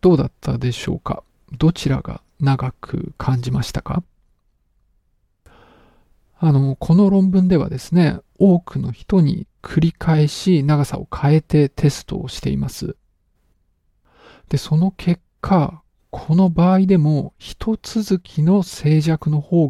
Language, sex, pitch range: Japanese, male, 130-185 Hz